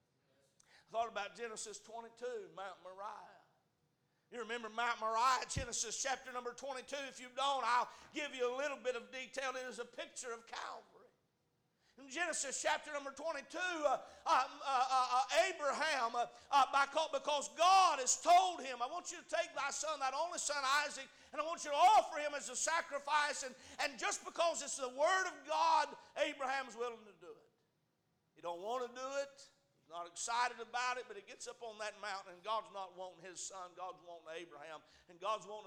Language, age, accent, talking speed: English, 50-69, American, 190 wpm